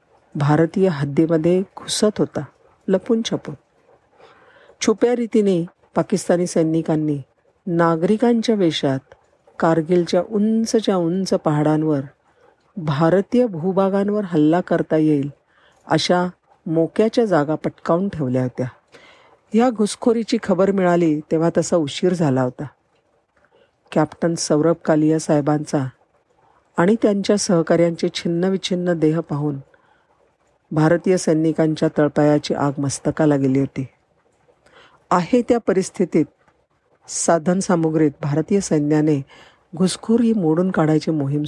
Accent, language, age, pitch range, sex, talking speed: native, Marathi, 50-69, 150-195 Hz, female, 90 wpm